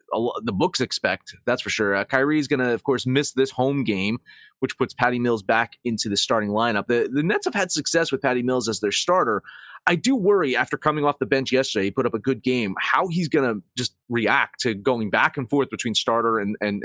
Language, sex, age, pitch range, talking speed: English, male, 30-49, 110-145 Hz, 245 wpm